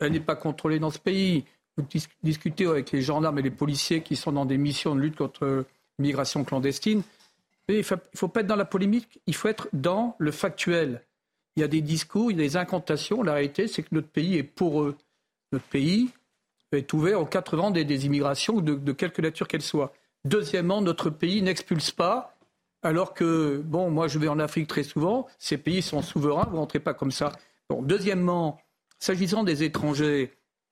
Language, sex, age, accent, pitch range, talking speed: French, male, 50-69, French, 145-190 Hz, 200 wpm